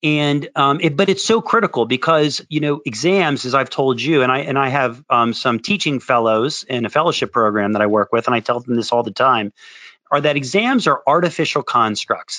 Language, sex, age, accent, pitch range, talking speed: English, male, 40-59, American, 120-155 Hz, 225 wpm